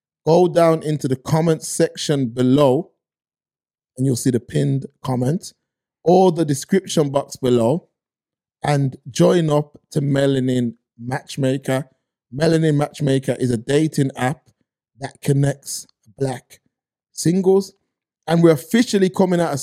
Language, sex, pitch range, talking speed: English, male, 140-180 Hz, 120 wpm